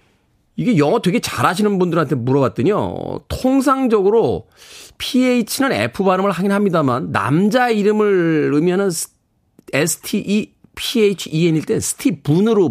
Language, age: Korean, 40-59